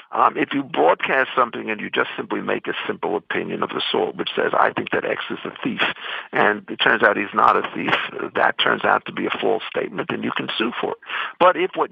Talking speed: 250 wpm